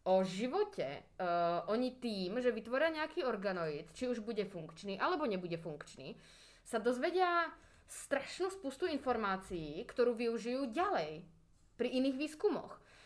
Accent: native